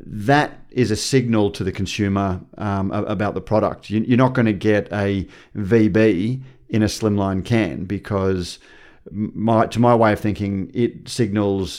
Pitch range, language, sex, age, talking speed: 100-125 Hz, English, male, 40-59, 160 wpm